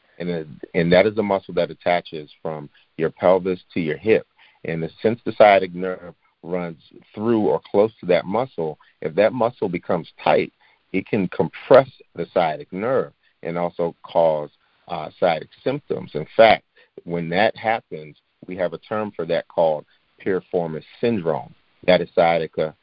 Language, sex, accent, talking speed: English, male, American, 160 wpm